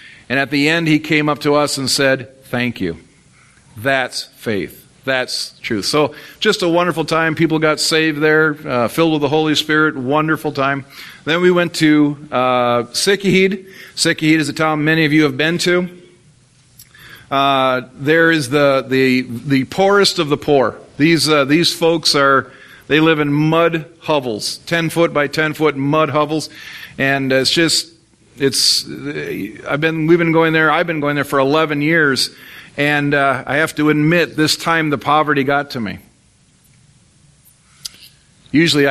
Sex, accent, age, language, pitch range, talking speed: male, American, 50-69, English, 135-160 Hz, 165 wpm